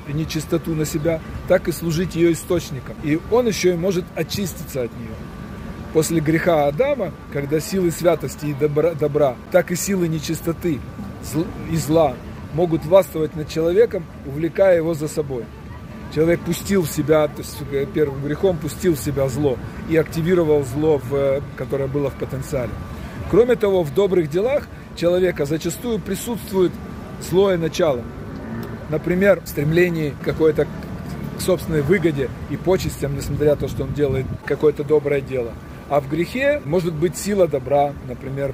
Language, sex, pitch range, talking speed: Russian, male, 140-170 Hz, 145 wpm